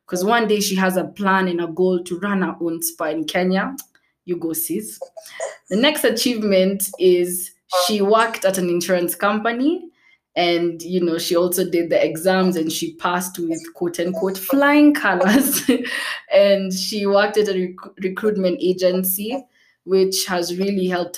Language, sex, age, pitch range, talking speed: English, female, 20-39, 170-210 Hz, 160 wpm